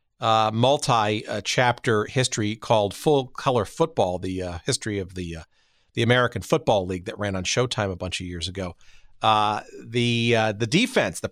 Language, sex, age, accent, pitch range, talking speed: English, male, 50-69, American, 110-140 Hz, 170 wpm